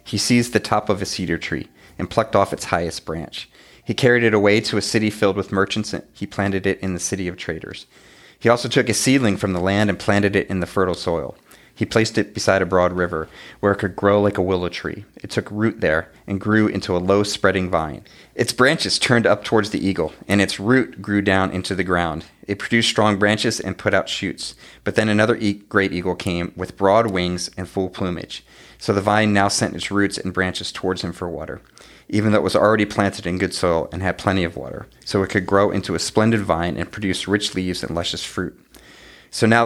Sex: male